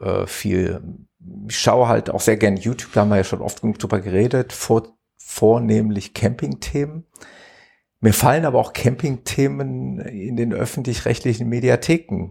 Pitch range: 105-140 Hz